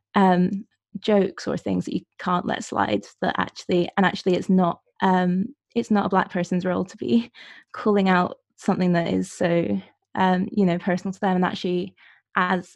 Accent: British